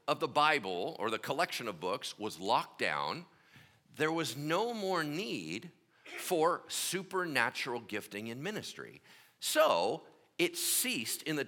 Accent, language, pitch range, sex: American, English, 135-210 Hz, male